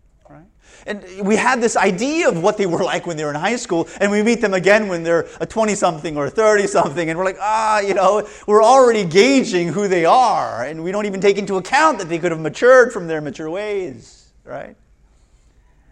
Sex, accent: male, American